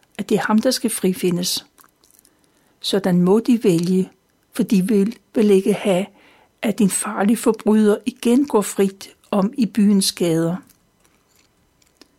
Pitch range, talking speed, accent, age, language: 190-235 Hz, 140 wpm, native, 60-79, Danish